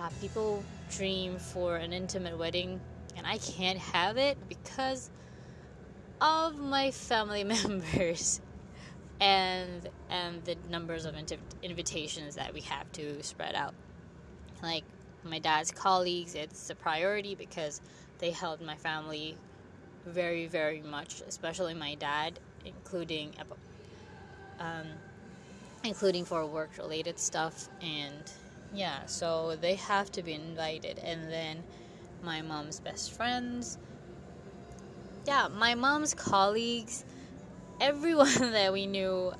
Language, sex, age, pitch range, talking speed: English, female, 20-39, 155-195 Hz, 115 wpm